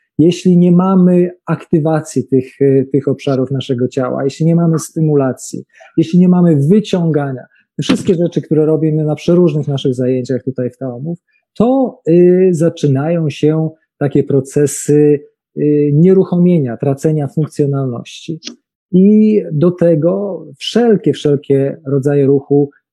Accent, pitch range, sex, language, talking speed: native, 125-165 Hz, male, Polish, 120 wpm